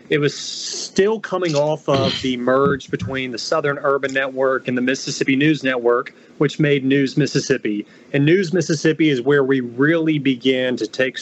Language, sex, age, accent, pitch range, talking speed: English, male, 30-49, American, 130-165 Hz, 170 wpm